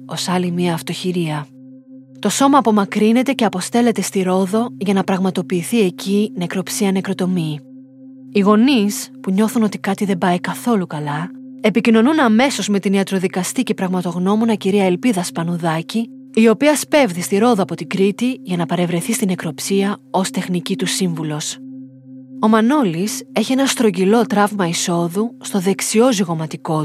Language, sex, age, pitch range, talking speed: Greek, female, 30-49, 175-230 Hz, 140 wpm